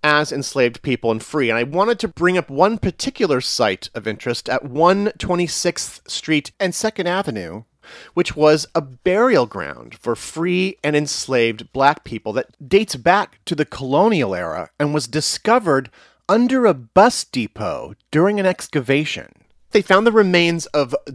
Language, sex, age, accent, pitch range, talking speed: English, male, 30-49, American, 125-180 Hz, 155 wpm